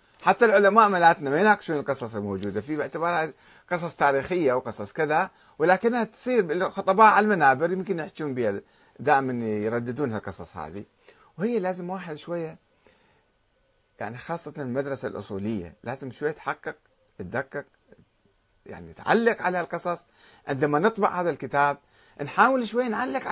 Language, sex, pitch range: Arabic, male, 115-195 Hz